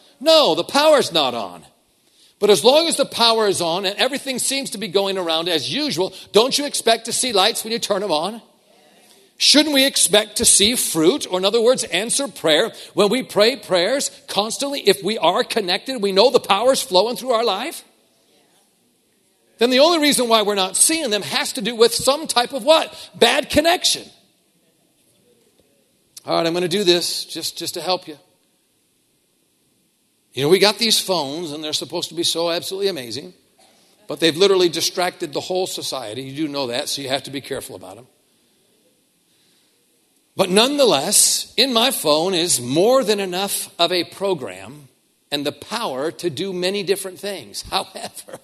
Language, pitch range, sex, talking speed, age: English, 175-240 Hz, male, 180 wpm, 50-69